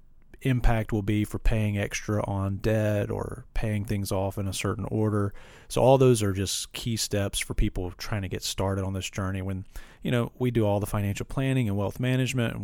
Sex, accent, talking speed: male, American, 215 wpm